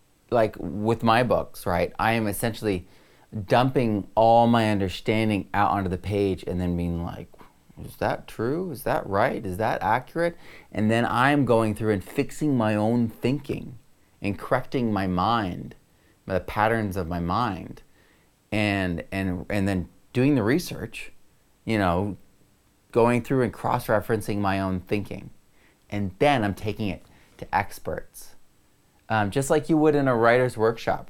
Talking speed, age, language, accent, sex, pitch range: 150 wpm, 30-49, English, American, male, 95-120 Hz